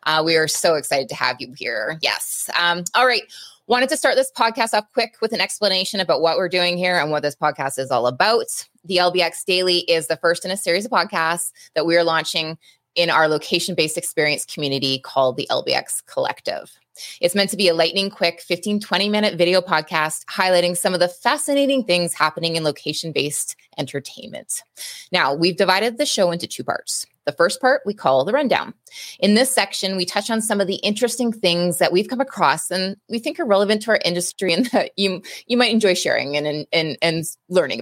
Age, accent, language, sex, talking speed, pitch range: 20-39, American, English, female, 205 wpm, 165-215 Hz